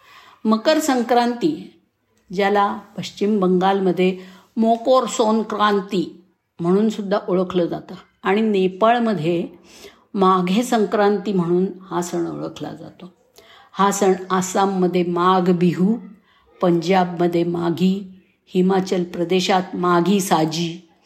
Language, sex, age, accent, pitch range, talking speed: Marathi, female, 50-69, native, 185-215 Hz, 90 wpm